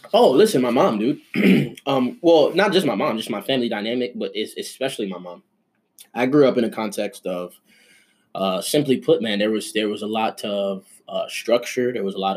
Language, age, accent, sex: English, 20-39, American, male